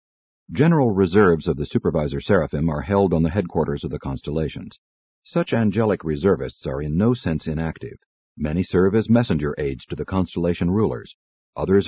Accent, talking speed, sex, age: American, 160 wpm, male, 50-69